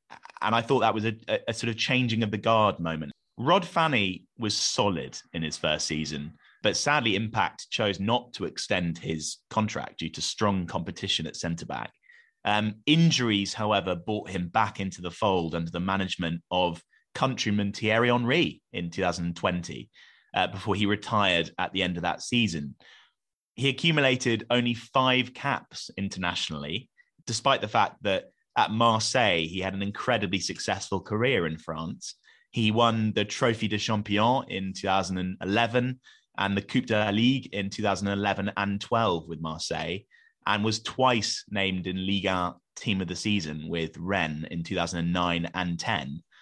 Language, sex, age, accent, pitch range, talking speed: English, male, 30-49, British, 90-115 Hz, 155 wpm